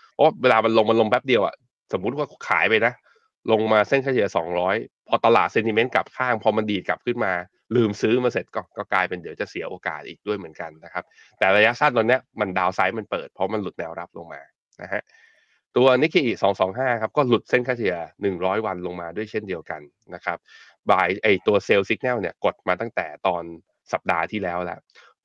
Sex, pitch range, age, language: male, 90-115 Hz, 20-39, Thai